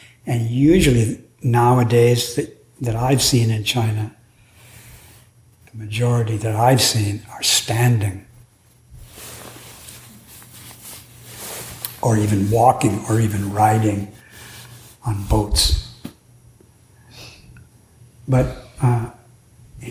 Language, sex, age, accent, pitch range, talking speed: English, male, 60-79, American, 115-130 Hz, 80 wpm